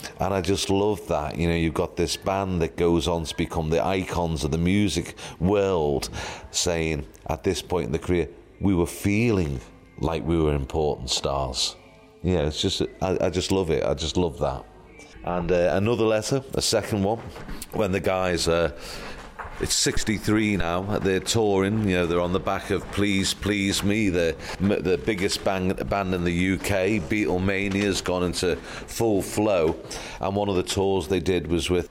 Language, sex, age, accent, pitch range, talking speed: English, male, 40-59, British, 85-100 Hz, 185 wpm